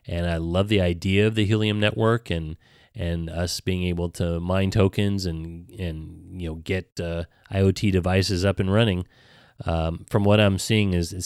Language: English